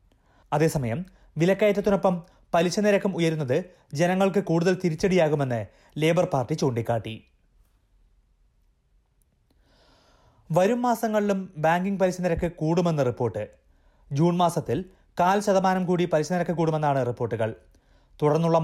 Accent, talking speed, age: native, 80 wpm, 30-49